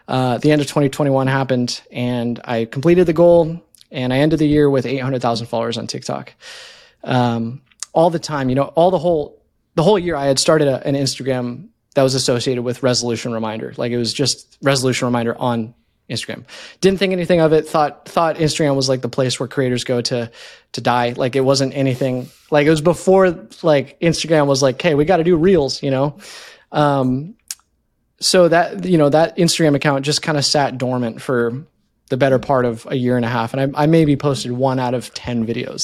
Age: 20-39